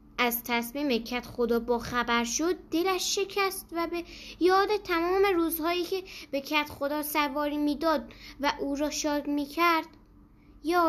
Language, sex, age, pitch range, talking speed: Persian, female, 10-29, 245-335 Hz, 150 wpm